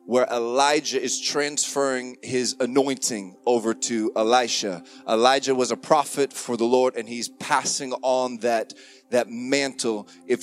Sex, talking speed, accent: male, 140 wpm, American